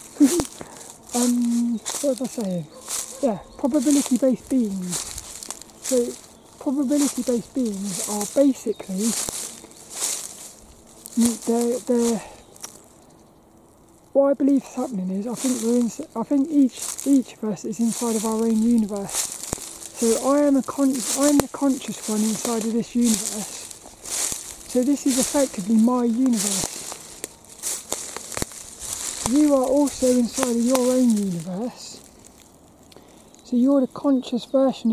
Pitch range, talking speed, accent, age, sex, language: 225-270 Hz, 110 wpm, British, 20-39, male, English